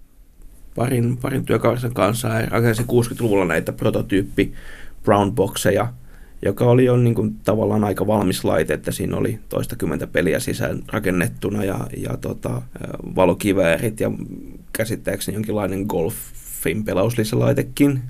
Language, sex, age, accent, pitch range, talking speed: Finnish, male, 30-49, native, 110-125 Hz, 125 wpm